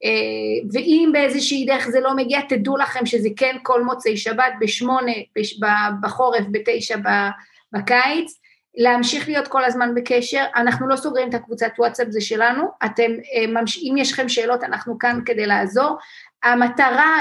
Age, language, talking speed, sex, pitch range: 30-49, Hebrew, 155 wpm, female, 235-290 Hz